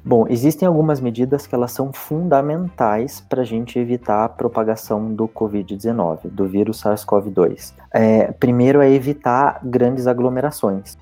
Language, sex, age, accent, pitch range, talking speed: Portuguese, male, 20-39, Brazilian, 110-130 Hz, 125 wpm